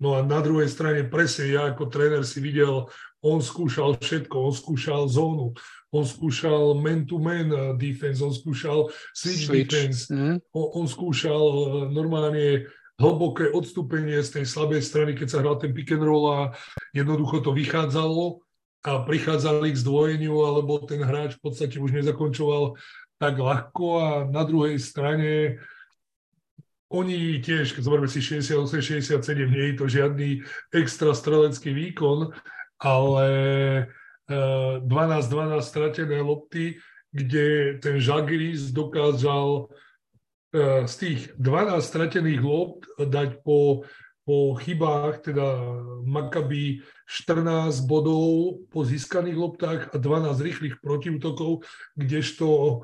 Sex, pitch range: male, 140-155 Hz